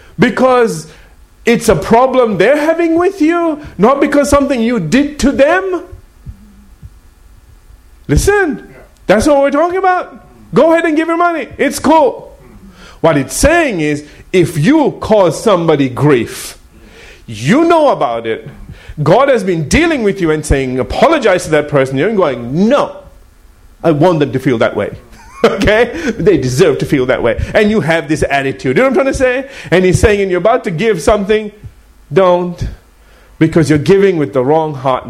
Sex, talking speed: male, 170 wpm